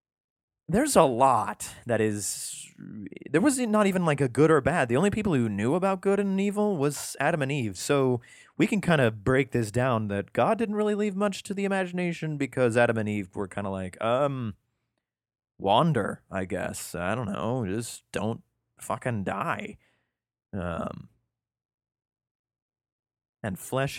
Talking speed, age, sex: 165 wpm, 30-49, male